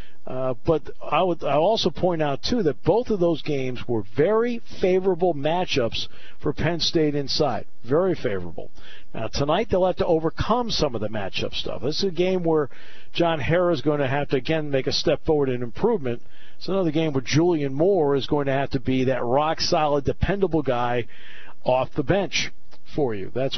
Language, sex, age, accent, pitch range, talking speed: English, male, 50-69, American, 125-170 Hz, 195 wpm